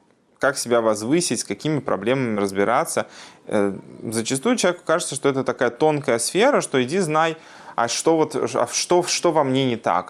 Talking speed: 150 wpm